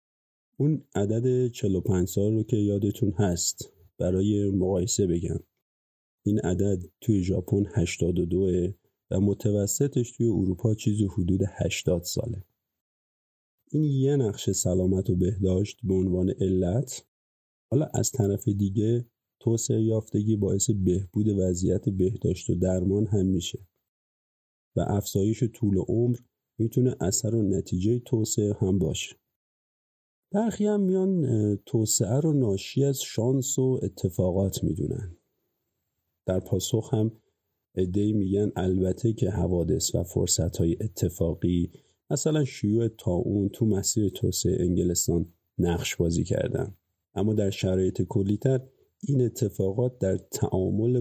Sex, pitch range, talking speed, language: male, 95-120 Hz, 120 wpm, Persian